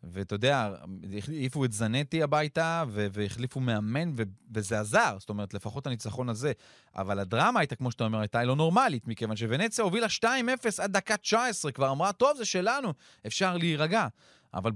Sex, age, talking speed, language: male, 30-49, 165 wpm, Hebrew